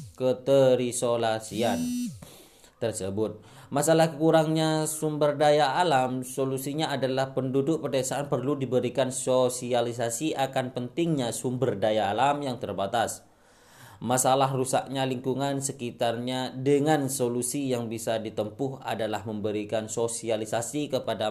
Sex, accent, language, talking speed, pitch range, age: male, native, Indonesian, 95 wpm, 95-130 Hz, 20-39